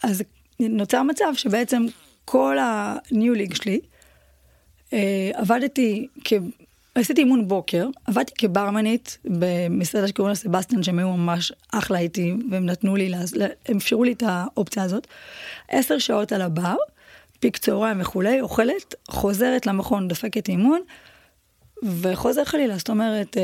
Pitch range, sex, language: 190-245 Hz, female, Hebrew